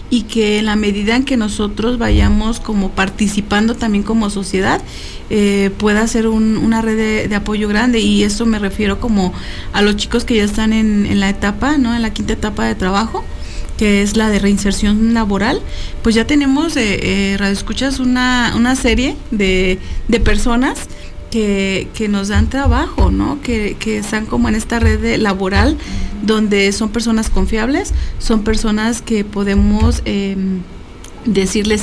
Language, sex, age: Spanish, female, 40-59